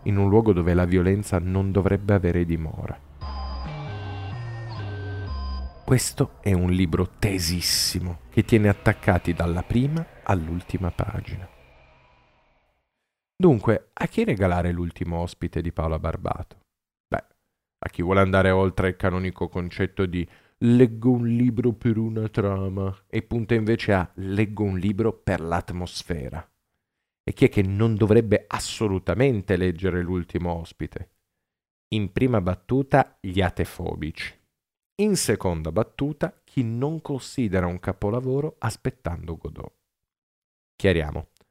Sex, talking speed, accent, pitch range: male, 120 wpm, native, 90-115 Hz